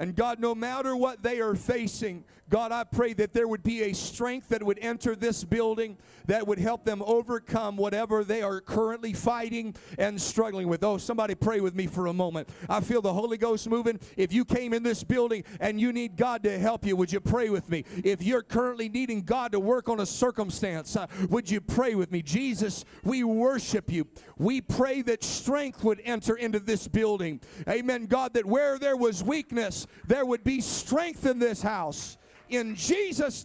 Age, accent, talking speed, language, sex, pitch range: 50-69, American, 200 wpm, English, male, 170-235 Hz